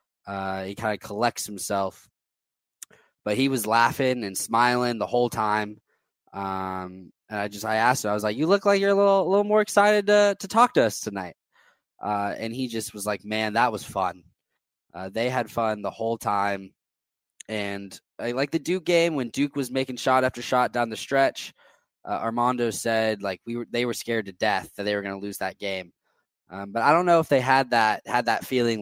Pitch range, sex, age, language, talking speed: 100-125 Hz, male, 20-39, English, 220 wpm